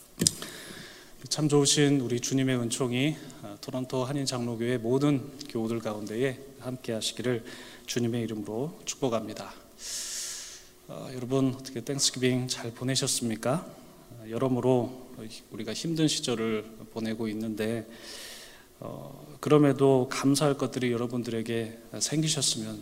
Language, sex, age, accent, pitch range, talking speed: English, male, 20-39, Korean, 115-135 Hz, 80 wpm